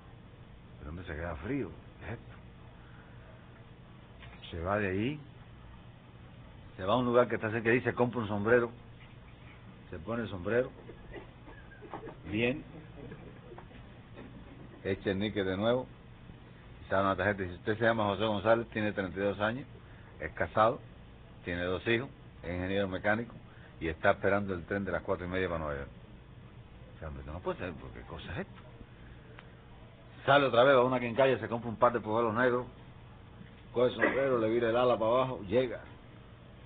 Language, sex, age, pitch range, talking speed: Spanish, male, 60-79, 100-125 Hz, 170 wpm